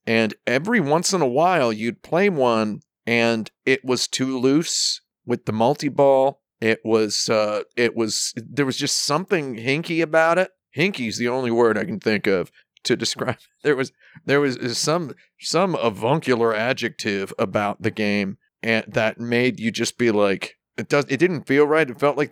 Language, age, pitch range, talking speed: English, 40-59, 110-135 Hz, 180 wpm